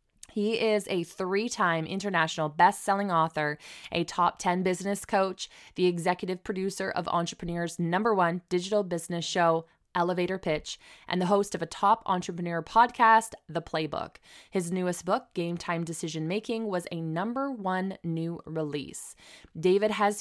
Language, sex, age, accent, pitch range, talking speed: English, female, 20-39, American, 165-205 Hz, 145 wpm